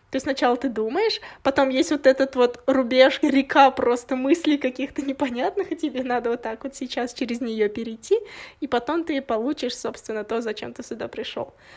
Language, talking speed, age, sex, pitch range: Russian, 180 wpm, 20-39, female, 230-270 Hz